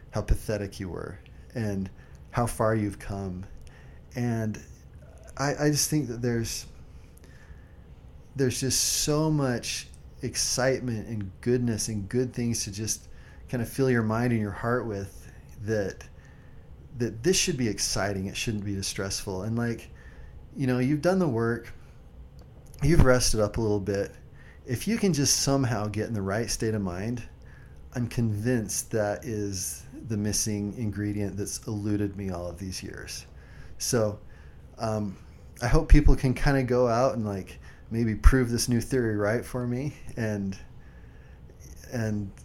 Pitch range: 95-125 Hz